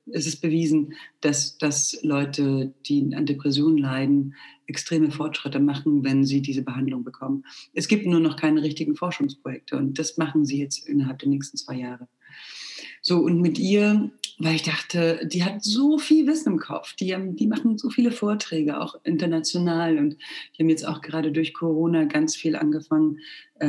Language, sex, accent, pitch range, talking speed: German, female, German, 150-190 Hz, 170 wpm